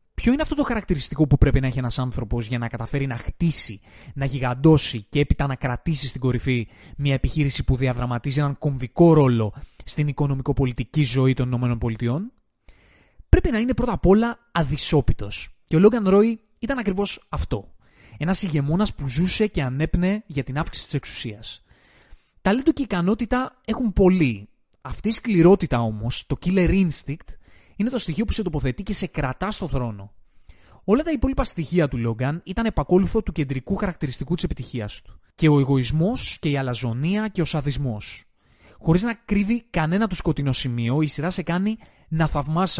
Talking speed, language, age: 170 wpm, Greek, 20-39